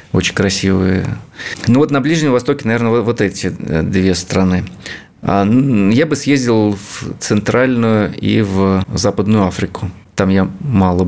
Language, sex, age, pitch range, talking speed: Russian, male, 30-49, 95-130 Hz, 135 wpm